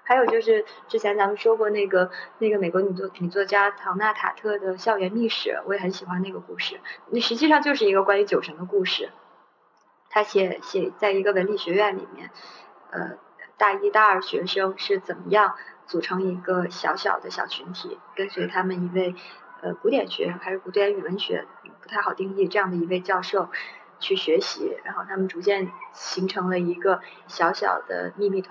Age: 20-39